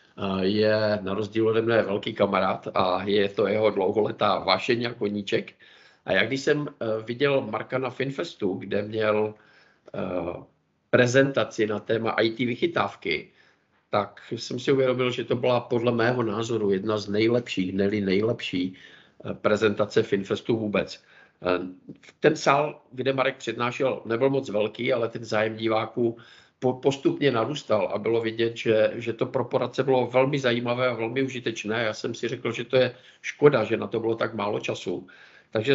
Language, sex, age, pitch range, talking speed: Czech, male, 50-69, 105-130 Hz, 150 wpm